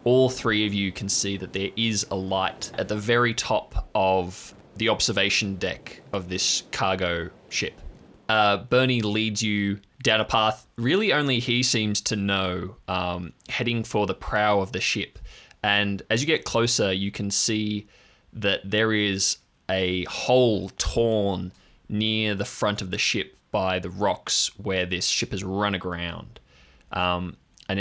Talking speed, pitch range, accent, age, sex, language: 160 wpm, 95-110 Hz, Australian, 20-39, male, English